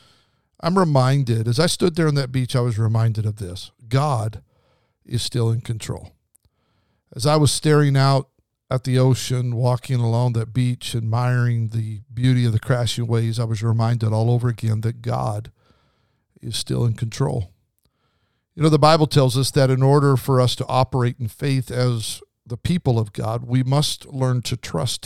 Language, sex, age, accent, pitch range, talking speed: English, male, 50-69, American, 115-140 Hz, 180 wpm